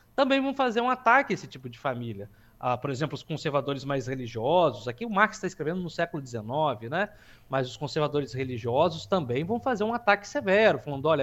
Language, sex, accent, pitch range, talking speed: Portuguese, male, Brazilian, 135-210 Hz, 205 wpm